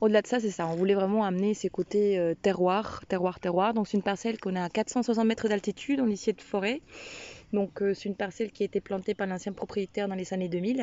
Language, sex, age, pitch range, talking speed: French, female, 20-39, 185-215 Hz, 245 wpm